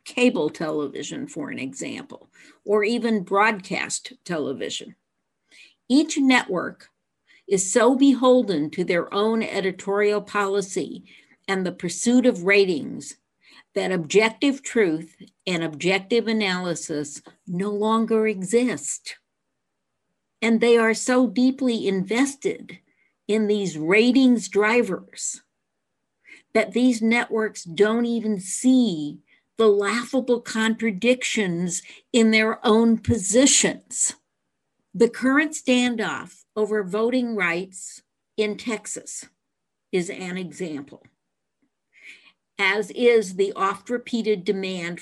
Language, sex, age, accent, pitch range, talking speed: English, female, 50-69, American, 185-235 Hz, 95 wpm